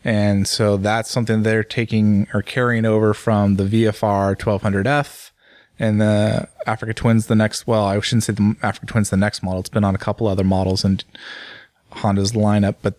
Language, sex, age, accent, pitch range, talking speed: English, male, 20-39, American, 100-120 Hz, 185 wpm